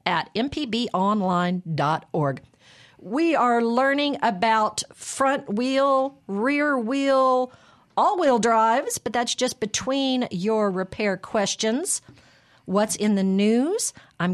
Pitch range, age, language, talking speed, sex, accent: 175-255 Hz, 50-69, English, 105 wpm, female, American